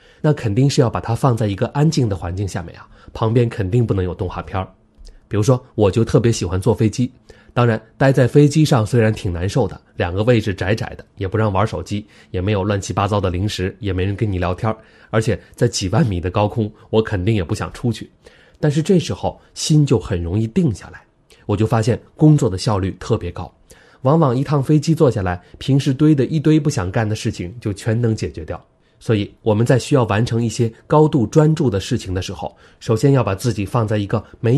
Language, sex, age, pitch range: Chinese, male, 20-39, 100-130 Hz